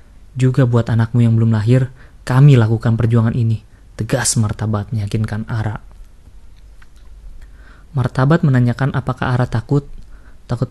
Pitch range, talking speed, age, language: 110-125 Hz, 110 wpm, 20-39, Indonesian